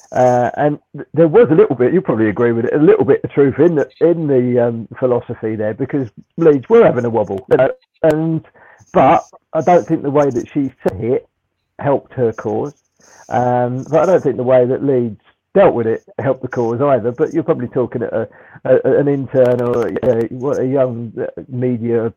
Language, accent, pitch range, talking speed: English, British, 120-140 Hz, 210 wpm